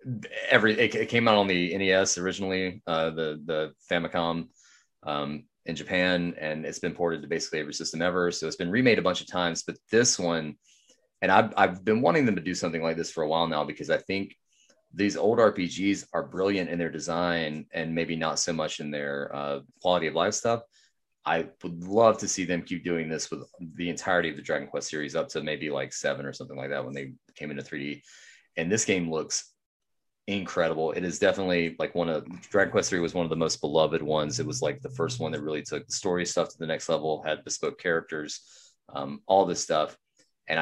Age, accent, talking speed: 30-49, American, 220 wpm